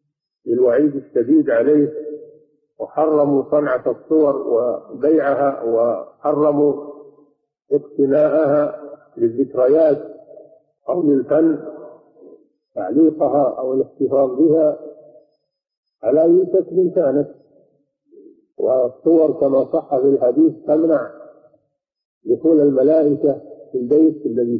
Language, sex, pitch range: Arabic, male, 140-170 Hz